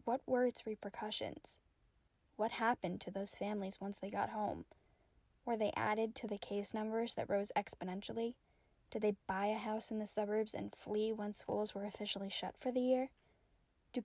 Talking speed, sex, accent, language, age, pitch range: 180 wpm, female, American, English, 10-29, 210-250 Hz